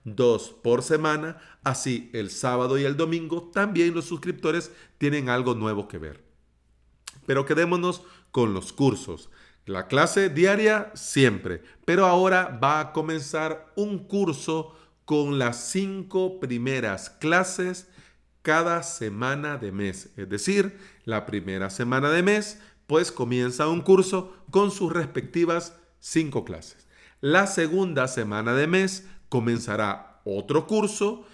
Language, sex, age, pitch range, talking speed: Spanish, male, 40-59, 115-175 Hz, 125 wpm